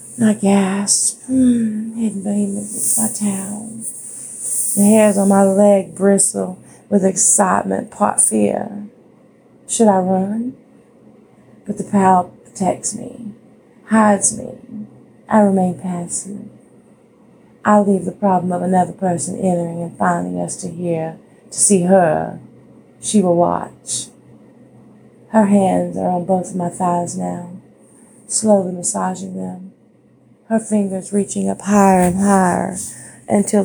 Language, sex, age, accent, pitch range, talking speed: English, female, 30-49, American, 185-220 Hz, 125 wpm